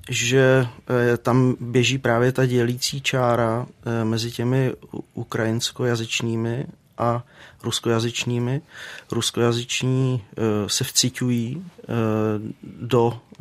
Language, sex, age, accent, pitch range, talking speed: Czech, male, 40-59, native, 110-125 Hz, 70 wpm